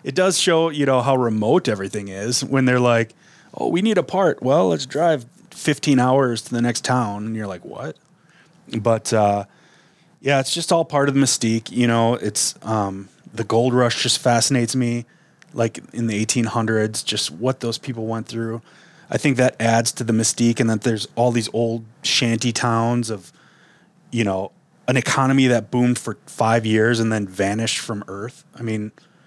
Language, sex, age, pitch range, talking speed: English, male, 30-49, 115-140 Hz, 190 wpm